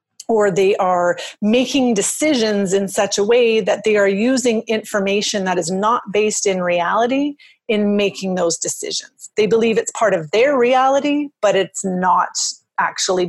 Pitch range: 180-225 Hz